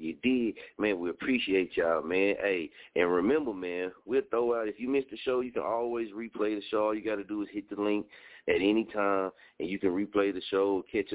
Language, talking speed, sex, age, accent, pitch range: English, 235 wpm, male, 30-49, American, 95-110 Hz